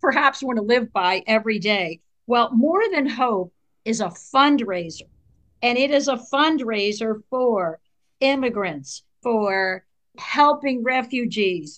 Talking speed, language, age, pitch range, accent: 120 wpm, English, 50-69, 200-250 Hz, American